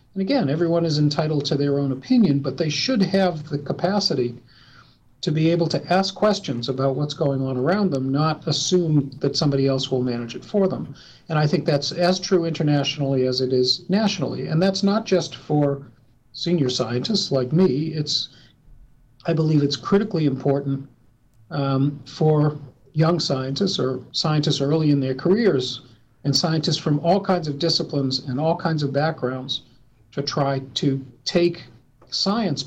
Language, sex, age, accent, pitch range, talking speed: English, male, 50-69, American, 130-165 Hz, 165 wpm